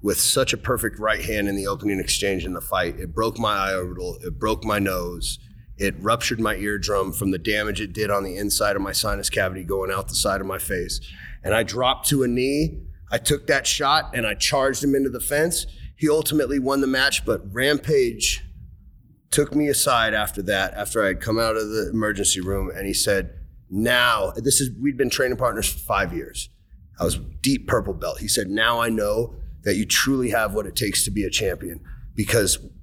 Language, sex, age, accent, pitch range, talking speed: English, male, 30-49, American, 100-140 Hz, 215 wpm